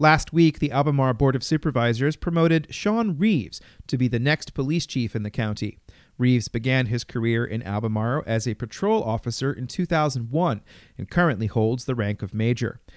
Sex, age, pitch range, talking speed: male, 40-59, 120-160 Hz, 175 wpm